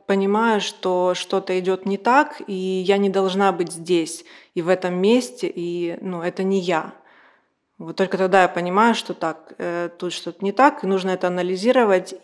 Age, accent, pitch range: 30-49, native, 180-200 Hz